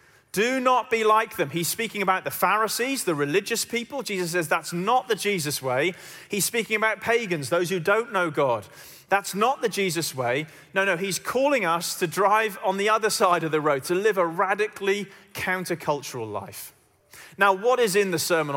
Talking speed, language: 195 wpm, English